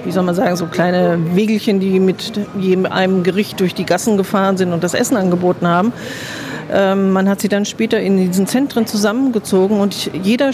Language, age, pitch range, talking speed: German, 50-69, 185-215 Hz, 195 wpm